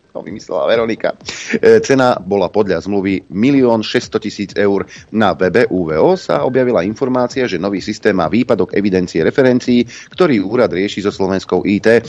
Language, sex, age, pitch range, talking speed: Slovak, male, 40-59, 90-125 Hz, 145 wpm